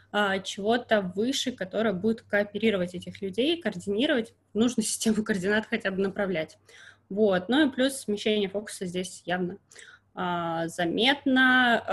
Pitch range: 195-235 Hz